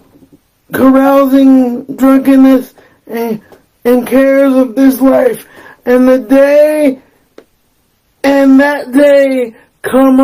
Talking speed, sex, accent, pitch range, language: 90 wpm, male, American, 245-270 Hz, English